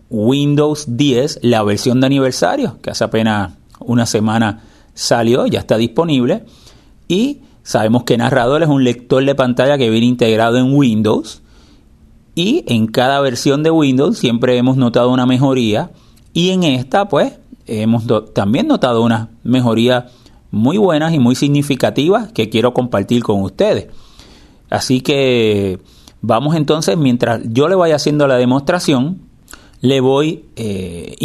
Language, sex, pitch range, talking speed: Spanish, male, 115-140 Hz, 140 wpm